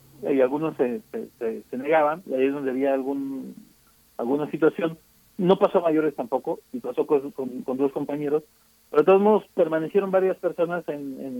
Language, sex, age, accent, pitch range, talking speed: Spanish, male, 40-59, Mexican, 135-170 Hz, 180 wpm